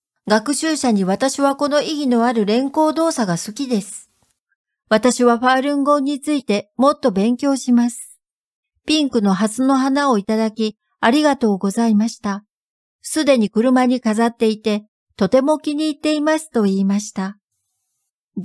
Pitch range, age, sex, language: 210-275 Hz, 60-79, female, Japanese